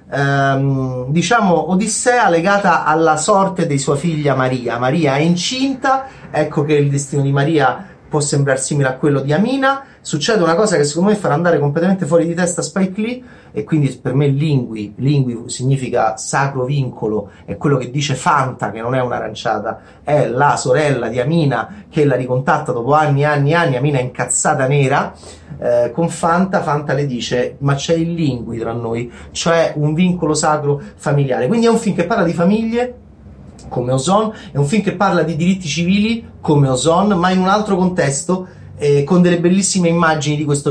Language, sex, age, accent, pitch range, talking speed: Italian, male, 30-49, native, 130-175 Hz, 185 wpm